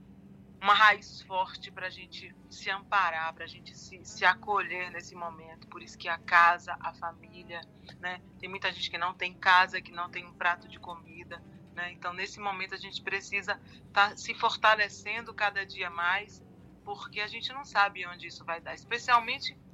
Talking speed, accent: 185 wpm, Brazilian